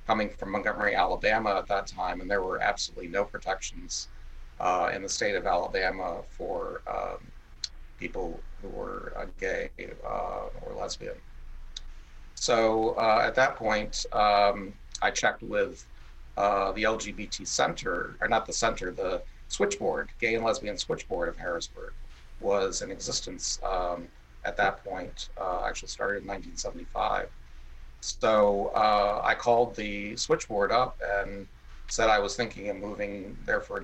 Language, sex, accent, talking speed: English, male, American, 145 wpm